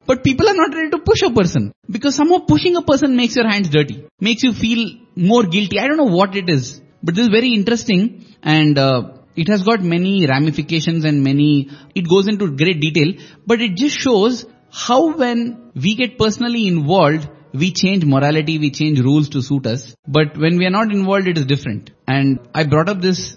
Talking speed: 210 wpm